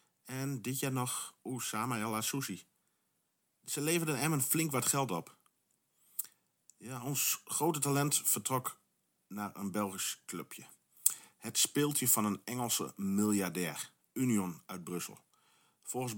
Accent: Dutch